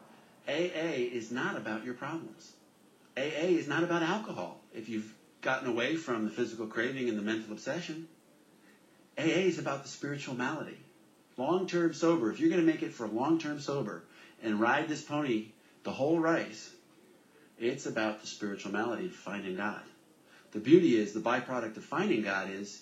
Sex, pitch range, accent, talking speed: male, 110-140 Hz, American, 165 wpm